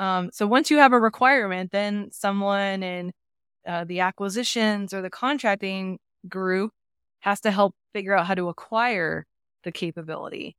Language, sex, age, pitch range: English, female, 20-39, 170-200 Hz